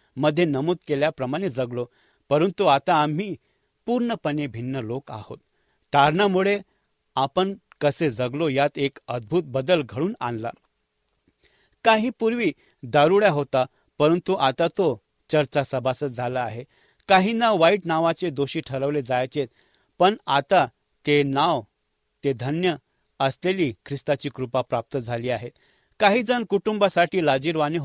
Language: English